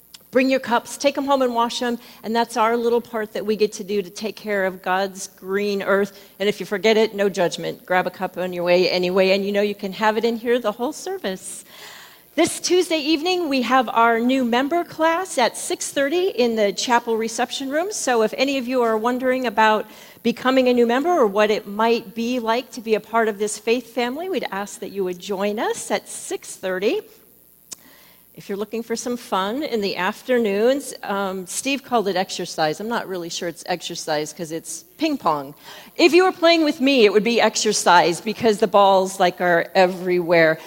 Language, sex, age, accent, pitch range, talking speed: English, female, 40-59, American, 195-255 Hz, 210 wpm